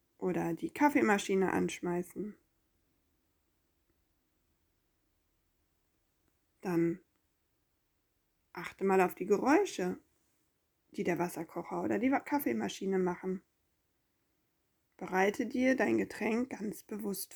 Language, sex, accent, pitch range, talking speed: German, female, German, 175-255 Hz, 80 wpm